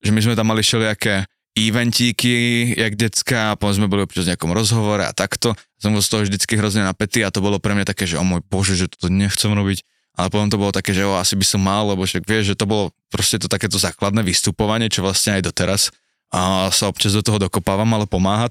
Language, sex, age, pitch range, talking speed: Slovak, male, 20-39, 100-120 Hz, 235 wpm